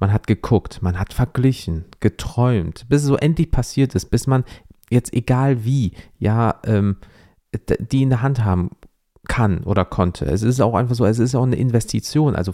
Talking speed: 185 wpm